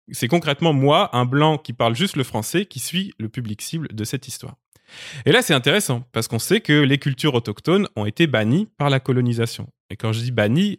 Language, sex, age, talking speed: French, male, 20-39, 220 wpm